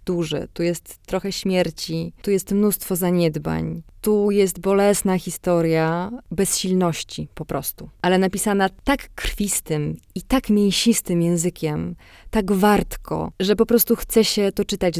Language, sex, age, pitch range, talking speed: Polish, female, 20-39, 160-190 Hz, 130 wpm